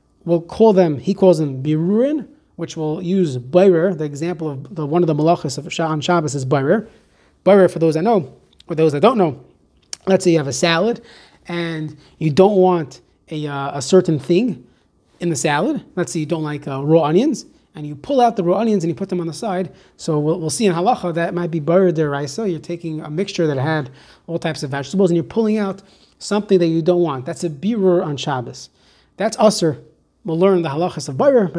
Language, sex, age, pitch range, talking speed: English, male, 30-49, 155-200 Hz, 225 wpm